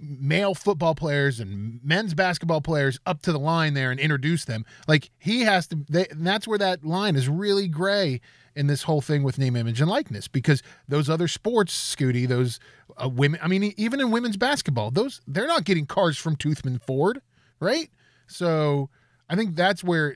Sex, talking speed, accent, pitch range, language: male, 195 wpm, American, 125-175 Hz, English